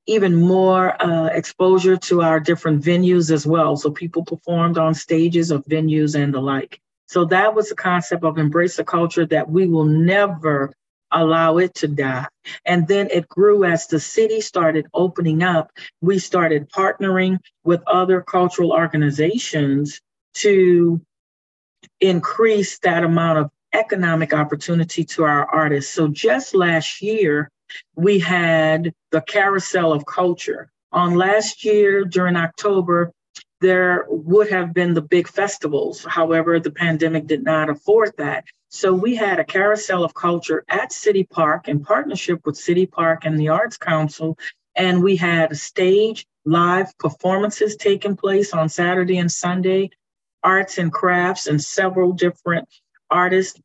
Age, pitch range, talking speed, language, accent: 40-59, 160-190 Hz, 150 wpm, English, American